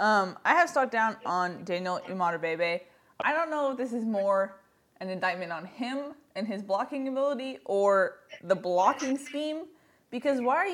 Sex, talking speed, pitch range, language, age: female, 170 wpm, 195-280 Hz, English, 20-39